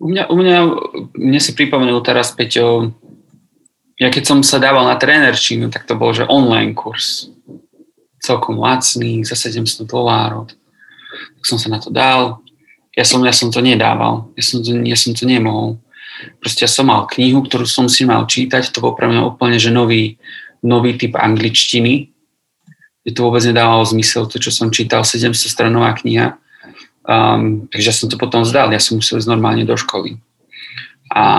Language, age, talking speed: Slovak, 30-49, 170 wpm